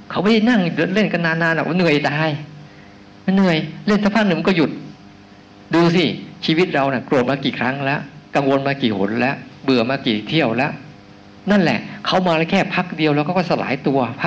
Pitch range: 105-165 Hz